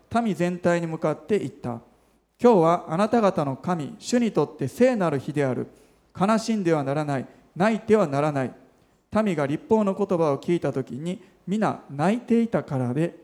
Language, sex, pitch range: Japanese, male, 140-205 Hz